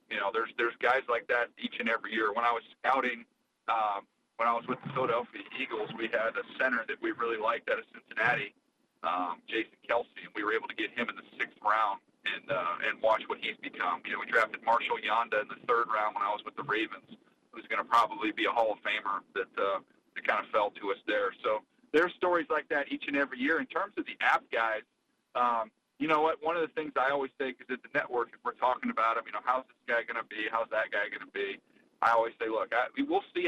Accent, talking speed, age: American, 260 wpm, 40-59